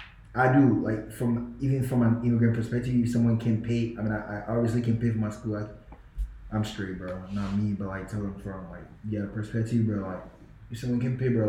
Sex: male